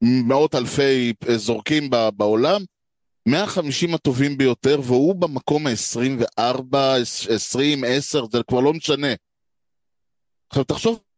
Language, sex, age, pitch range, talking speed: Hebrew, male, 30-49, 125-160 Hz, 95 wpm